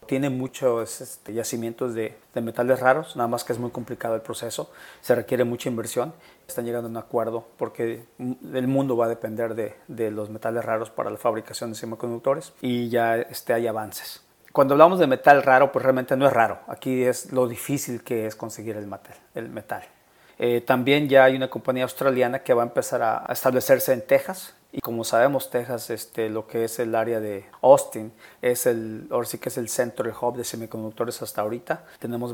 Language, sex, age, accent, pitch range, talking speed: Spanish, male, 40-59, Mexican, 115-130 Hz, 200 wpm